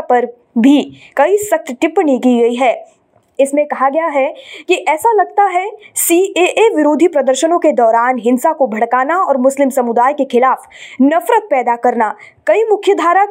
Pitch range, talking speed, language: 255-355 Hz, 160 wpm, Hindi